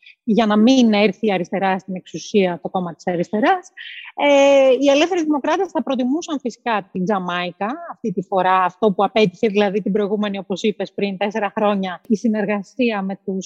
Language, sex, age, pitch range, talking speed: Greek, female, 30-49, 205-270 Hz, 175 wpm